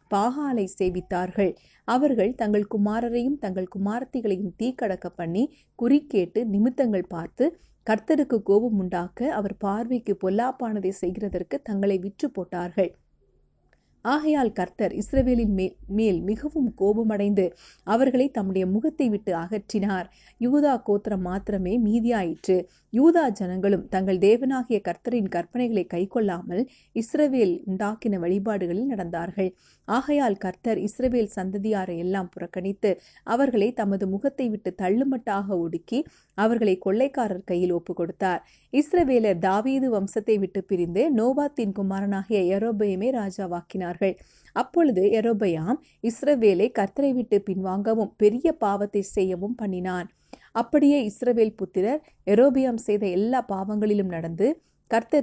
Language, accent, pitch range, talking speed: Tamil, native, 190-245 Hz, 90 wpm